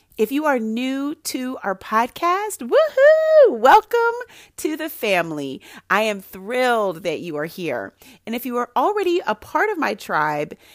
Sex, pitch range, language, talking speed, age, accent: female, 180-245 Hz, English, 160 wpm, 30-49, American